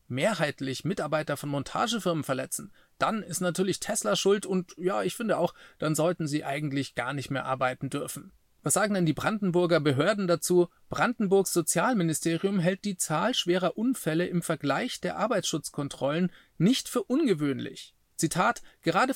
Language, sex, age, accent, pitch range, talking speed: German, male, 30-49, German, 145-185 Hz, 145 wpm